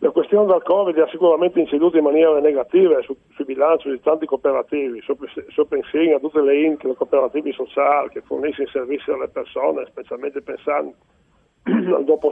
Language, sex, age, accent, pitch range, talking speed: Italian, male, 40-59, native, 135-155 Hz, 180 wpm